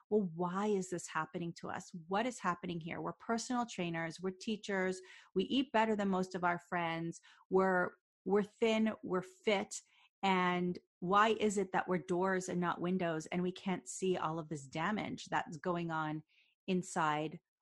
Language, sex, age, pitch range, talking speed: English, female, 30-49, 170-195 Hz, 175 wpm